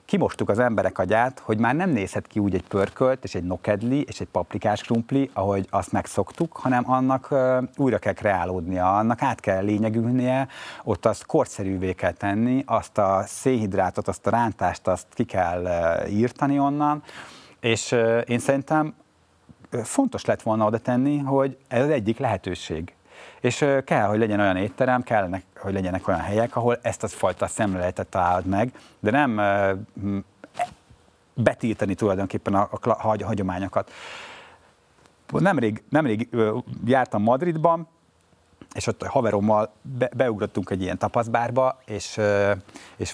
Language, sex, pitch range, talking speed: Hungarian, male, 95-125 Hz, 140 wpm